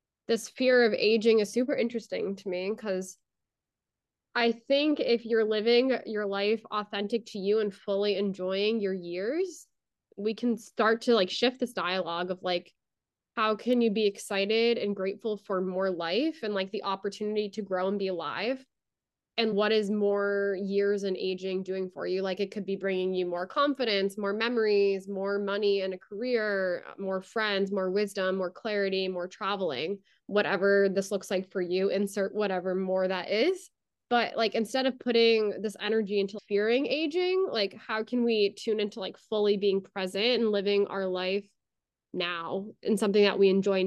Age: 20-39